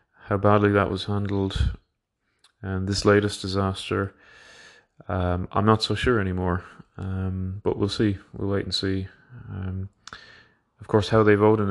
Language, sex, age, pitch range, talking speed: English, male, 20-39, 95-100 Hz, 155 wpm